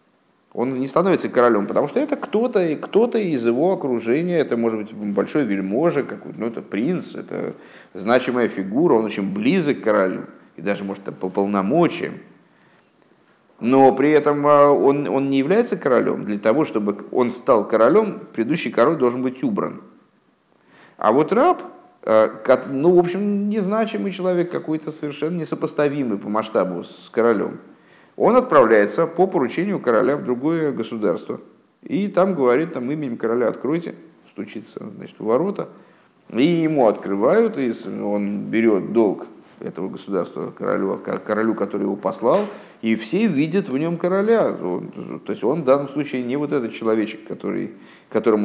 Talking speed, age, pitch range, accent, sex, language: 145 wpm, 50-69, 110-165 Hz, native, male, Russian